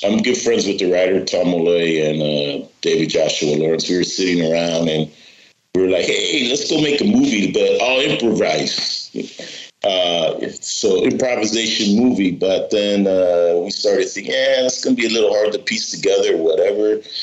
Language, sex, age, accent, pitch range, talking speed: English, male, 40-59, American, 95-125 Hz, 185 wpm